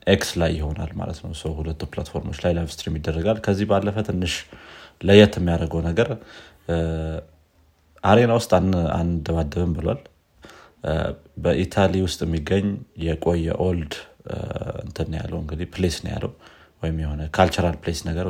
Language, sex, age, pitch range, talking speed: Amharic, male, 30-49, 80-100 Hz, 130 wpm